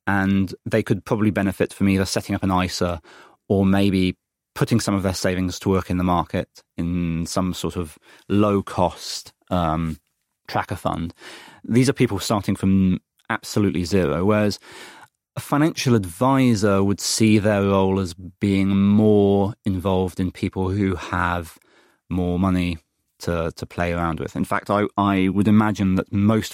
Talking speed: 160 wpm